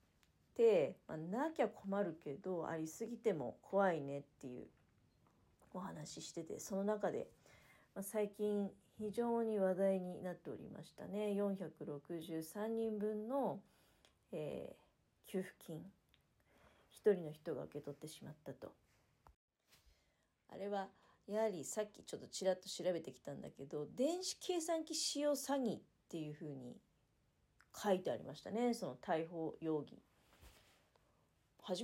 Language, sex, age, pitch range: Japanese, female, 40-59, 165-235 Hz